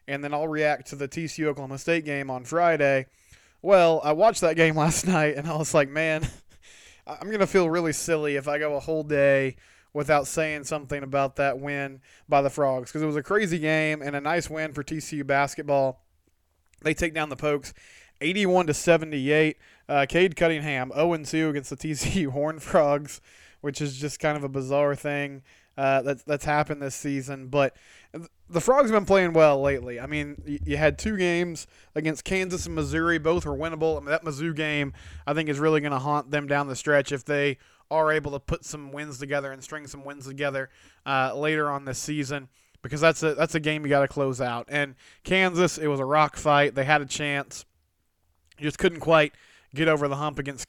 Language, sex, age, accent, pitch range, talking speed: English, male, 20-39, American, 140-155 Hz, 205 wpm